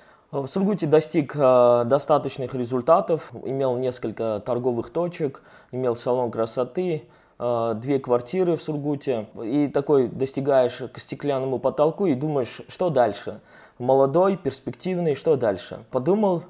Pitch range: 125-160 Hz